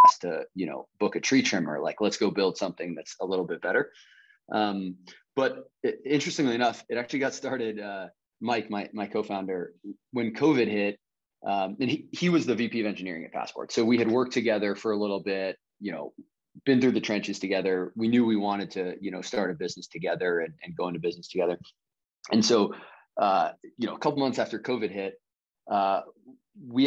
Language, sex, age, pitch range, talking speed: English, male, 30-49, 100-140 Hz, 205 wpm